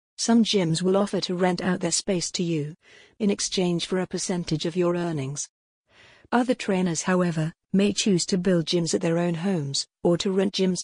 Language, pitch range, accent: English, 175-200 Hz, British